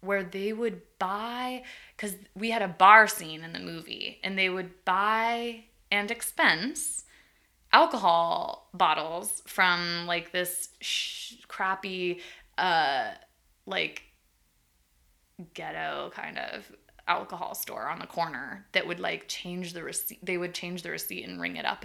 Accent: American